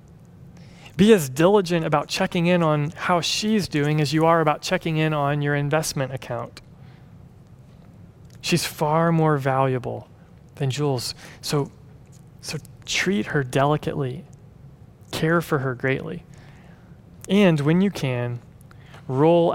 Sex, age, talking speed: male, 30-49, 125 wpm